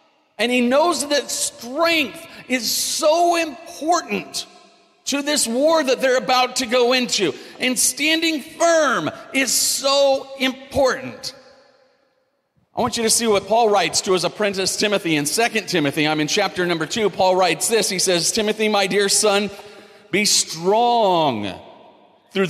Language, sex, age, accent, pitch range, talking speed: English, male, 40-59, American, 190-260 Hz, 145 wpm